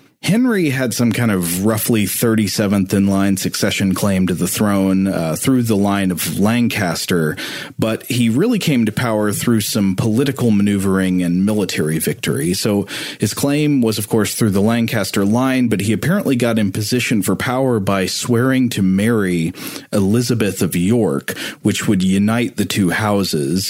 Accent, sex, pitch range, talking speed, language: American, male, 95-115 Hz, 160 wpm, English